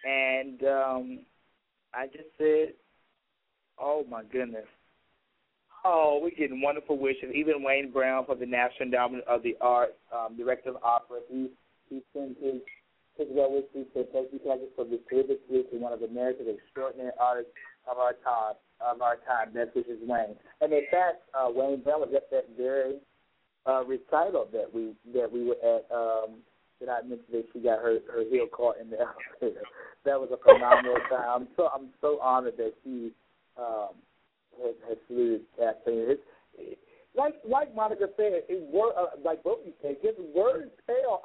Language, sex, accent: English, male, American